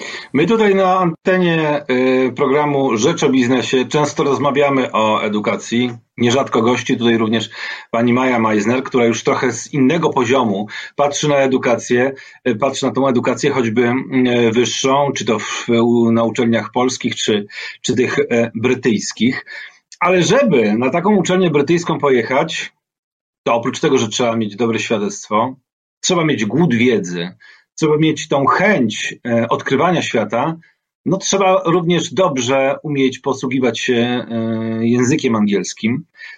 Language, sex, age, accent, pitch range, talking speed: Polish, male, 40-59, native, 120-160 Hz, 130 wpm